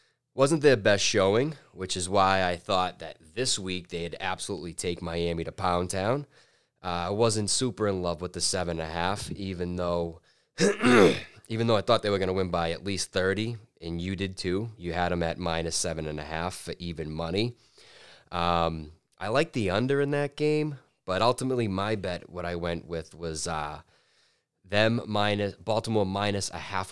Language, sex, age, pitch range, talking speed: English, male, 20-39, 85-105 Hz, 190 wpm